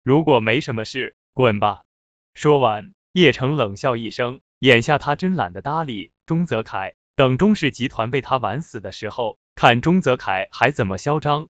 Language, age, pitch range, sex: Chinese, 20-39, 110-160 Hz, male